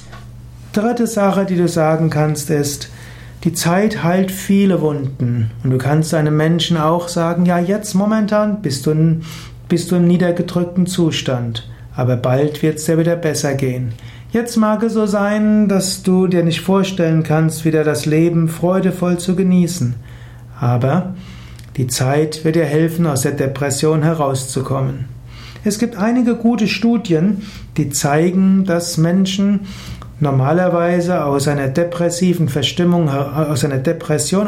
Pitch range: 140-180 Hz